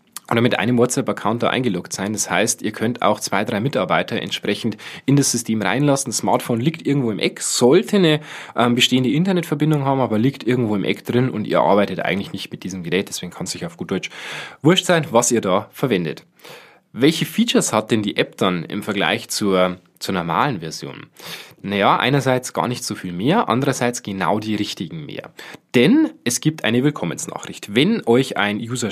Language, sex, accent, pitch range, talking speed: German, male, German, 110-145 Hz, 190 wpm